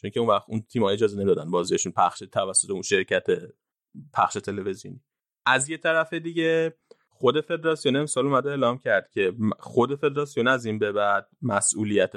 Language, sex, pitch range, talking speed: Persian, male, 105-140 Hz, 165 wpm